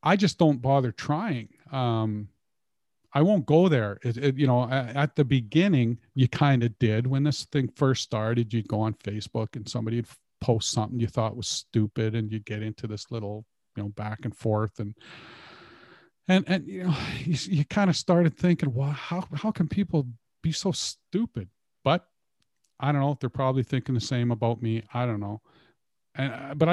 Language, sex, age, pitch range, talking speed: English, male, 40-59, 115-145 Hz, 195 wpm